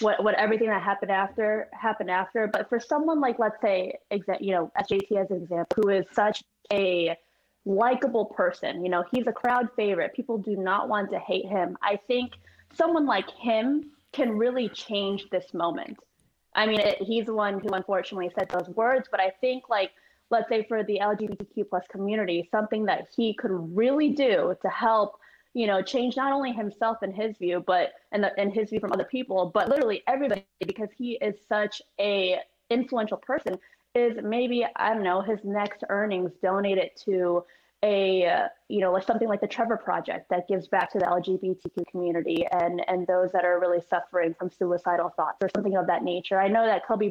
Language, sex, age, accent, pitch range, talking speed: English, female, 20-39, American, 185-230 Hz, 195 wpm